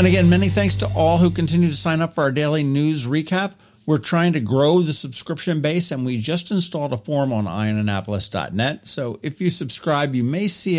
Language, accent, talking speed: English, American, 210 wpm